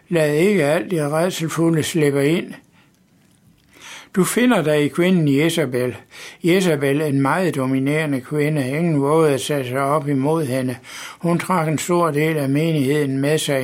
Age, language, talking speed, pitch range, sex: 60-79, Danish, 150 wpm, 140-165 Hz, male